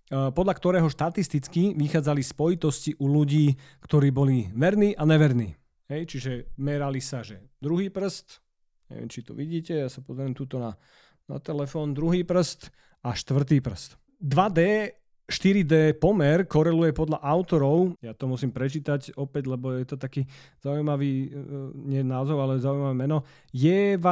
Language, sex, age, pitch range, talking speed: Slovak, male, 30-49, 140-180 Hz, 135 wpm